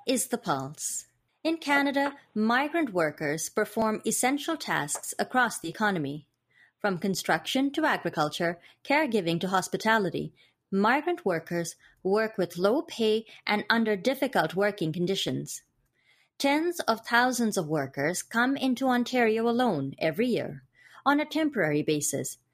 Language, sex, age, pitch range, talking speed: English, female, 30-49, 185-275 Hz, 120 wpm